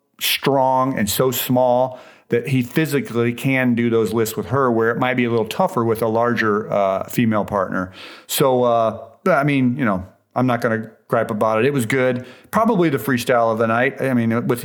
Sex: male